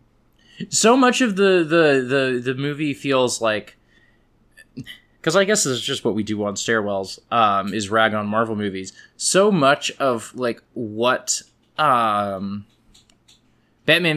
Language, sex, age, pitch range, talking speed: English, male, 20-39, 115-170 Hz, 140 wpm